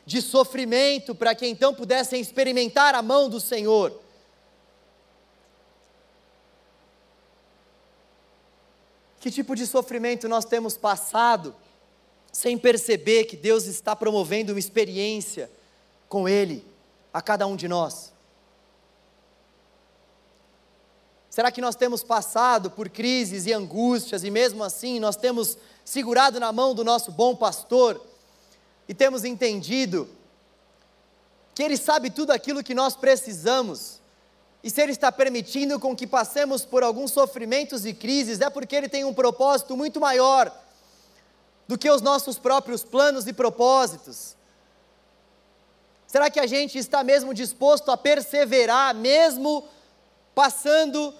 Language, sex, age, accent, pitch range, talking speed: Portuguese, male, 20-39, Brazilian, 230-275 Hz, 125 wpm